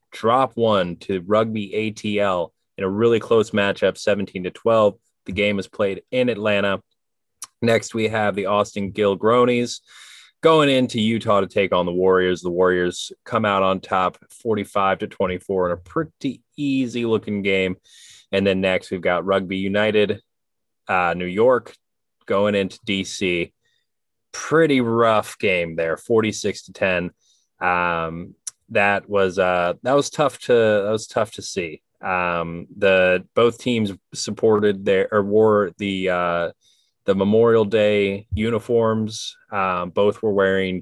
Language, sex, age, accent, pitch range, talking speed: English, male, 20-39, American, 95-115 Hz, 145 wpm